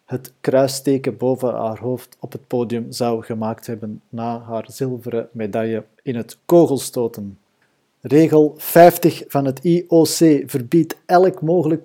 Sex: male